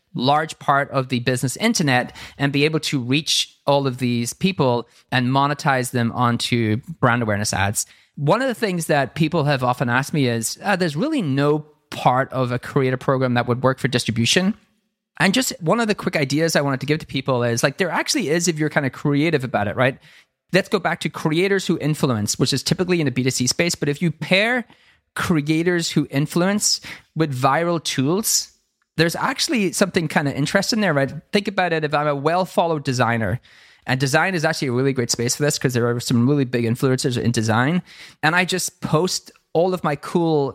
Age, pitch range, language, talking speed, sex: 30-49, 130-165 Hz, English, 210 wpm, male